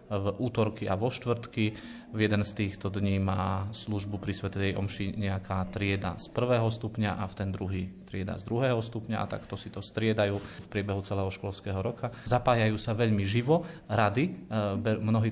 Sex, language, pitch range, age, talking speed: male, Slovak, 100-110 Hz, 30-49, 170 wpm